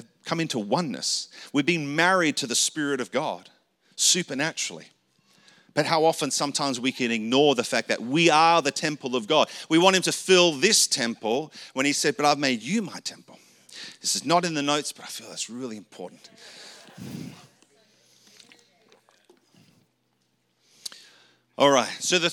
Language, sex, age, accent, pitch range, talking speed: English, male, 40-59, Australian, 130-175 Hz, 160 wpm